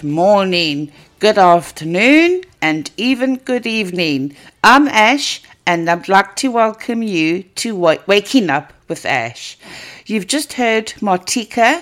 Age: 60-79